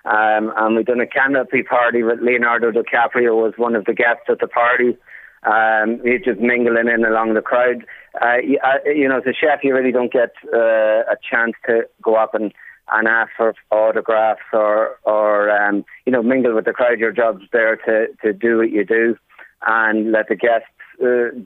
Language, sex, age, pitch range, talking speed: English, male, 30-49, 110-120 Hz, 205 wpm